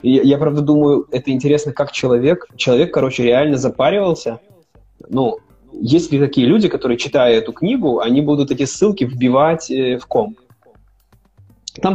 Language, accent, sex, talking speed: Russian, native, male, 150 wpm